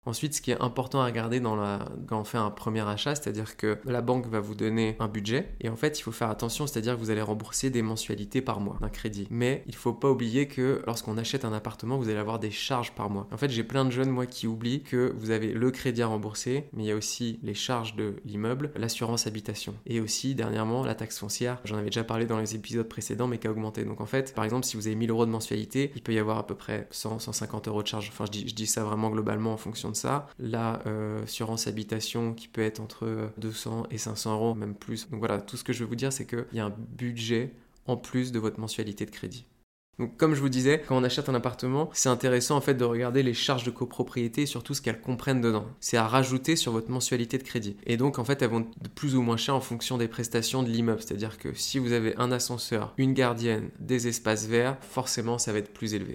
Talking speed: 265 wpm